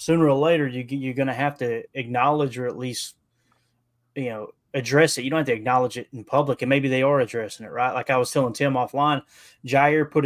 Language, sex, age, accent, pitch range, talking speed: English, male, 20-39, American, 125-150 Hz, 230 wpm